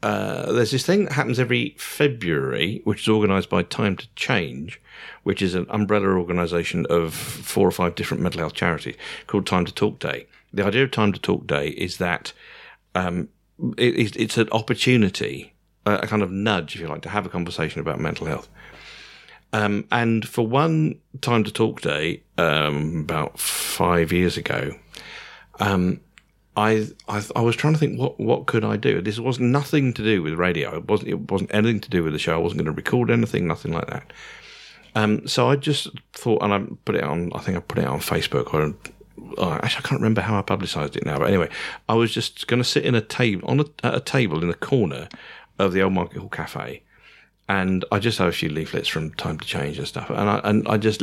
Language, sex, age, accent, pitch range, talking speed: English, male, 50-69, British, 90-115 Hz, 215 wpm